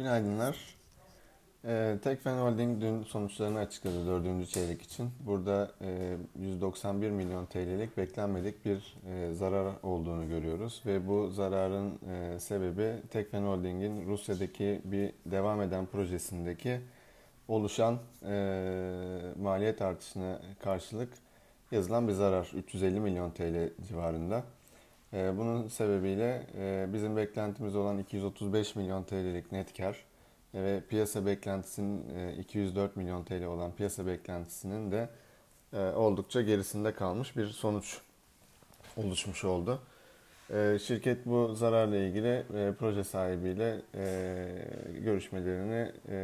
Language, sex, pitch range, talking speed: Turkish, male, 95-110 Hz, 105 wpm